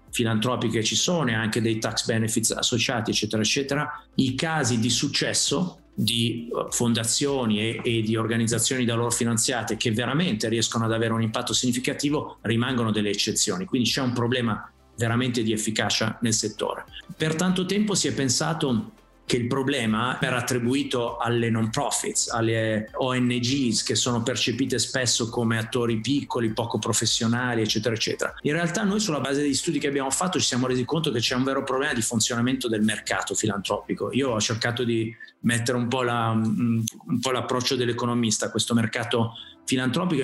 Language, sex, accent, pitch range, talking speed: Italian, male, native, 115-135 Hz, 165 wpm